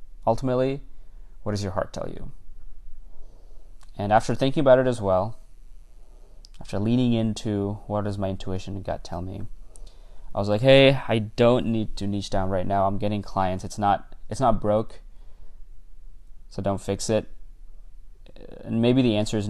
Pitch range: 95-110 Hz